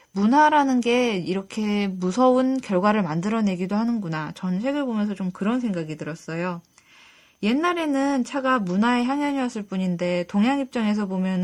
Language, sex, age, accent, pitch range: Korean, female, 20-39, native, 185-255 Hz